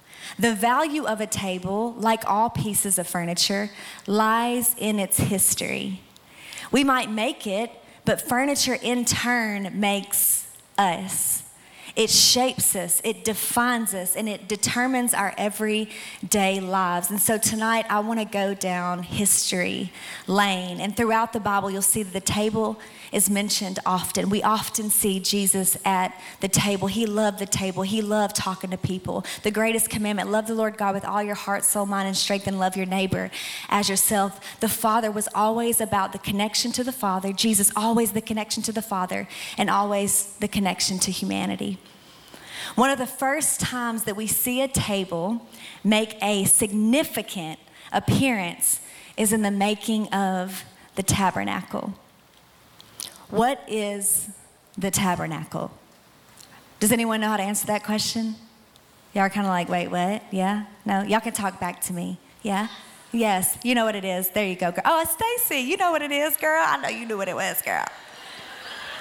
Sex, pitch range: female, 190-225 Hz